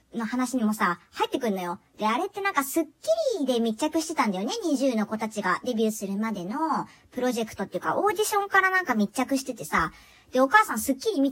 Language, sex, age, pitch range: Japanese, male, 40-59, 220-340 Hz